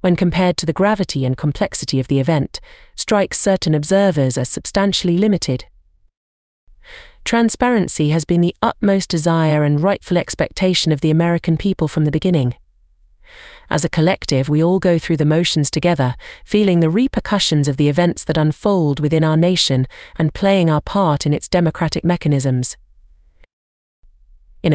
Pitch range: 135-180 Hz